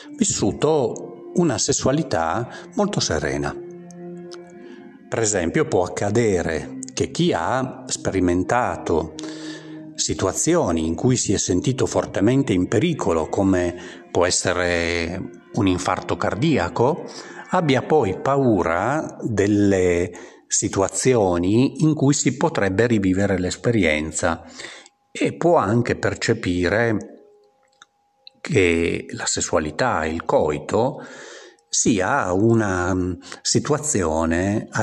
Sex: male